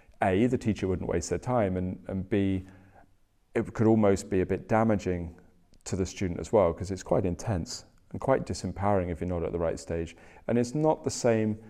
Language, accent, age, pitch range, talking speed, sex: English, British, 40-59, 90-105 Hz, 210 wpm, male